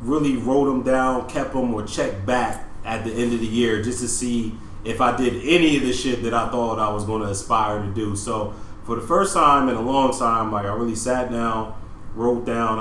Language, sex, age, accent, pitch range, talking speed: English, male, 30-49, American, 110-130 Hz, 240 wpm